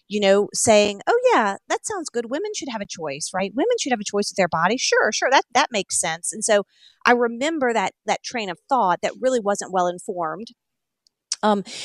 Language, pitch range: English, 185-235 Hz